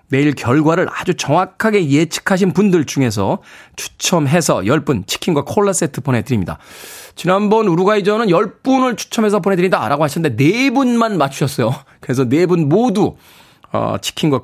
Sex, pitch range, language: male, 130-190 Hz, Korean